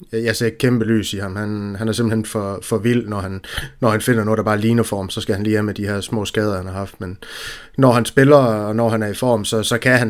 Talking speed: 295 wpm